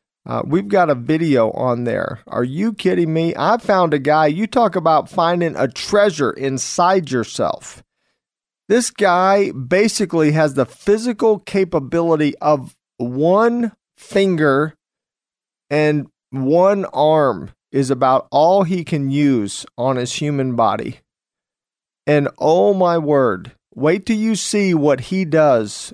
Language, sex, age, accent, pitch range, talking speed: English, male, 40-59, American, 135-190 Hz, 130 wpm